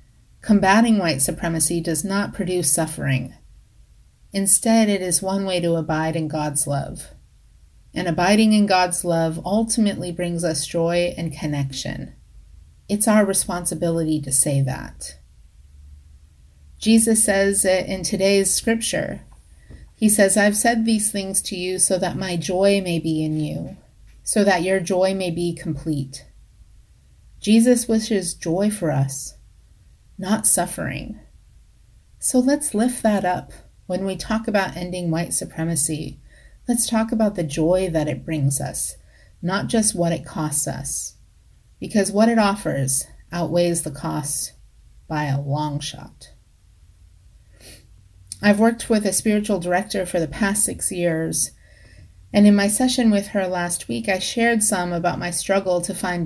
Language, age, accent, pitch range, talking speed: English, 30-49, American, 150-200 Hz, 145 wpm